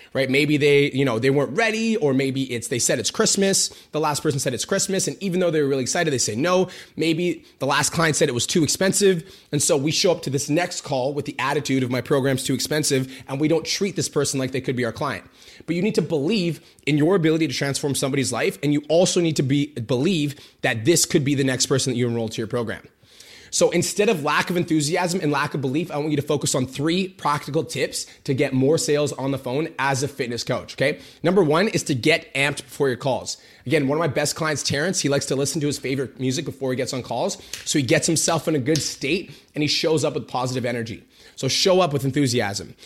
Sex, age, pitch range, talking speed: male, 30-49, 130-165 Hz, 255 wpm